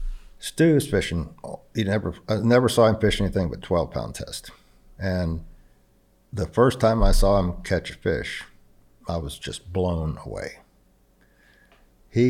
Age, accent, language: 60-79, American, English